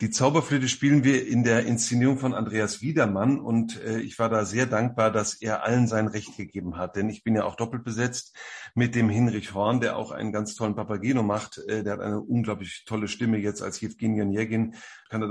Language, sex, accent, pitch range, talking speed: German, male, German, 110-125 Hz, 210 wpm